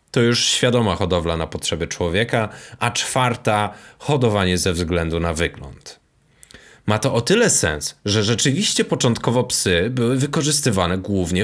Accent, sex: native, male